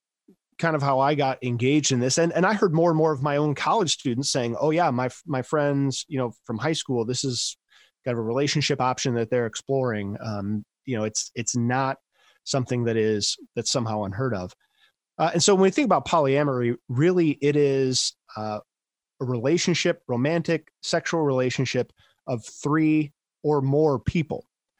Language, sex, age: English, male, 20-39